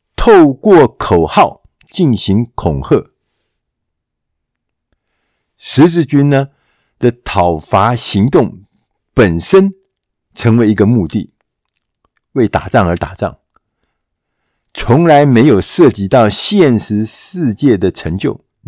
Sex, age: male, 50-69